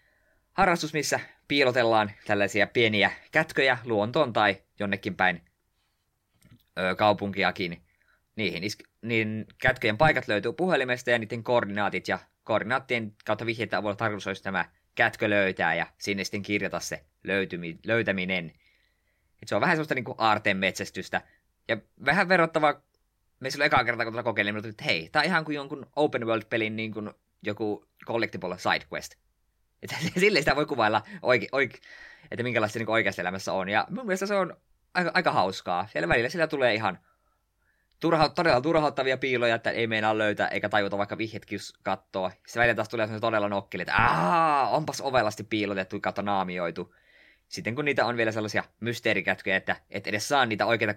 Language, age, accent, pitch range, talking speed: Finnish, 20-39, native, 100-125 Hz, 165 wpm